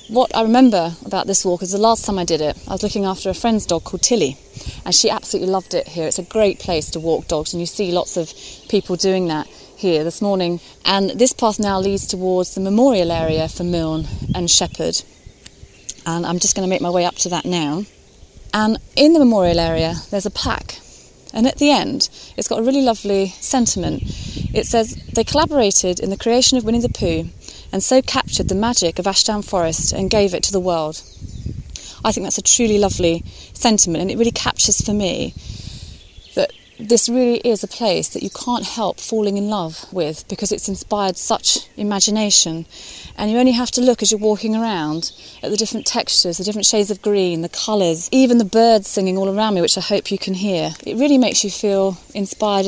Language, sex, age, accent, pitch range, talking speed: English, female, 30-49, British, 180-225 Hz, 210 wpm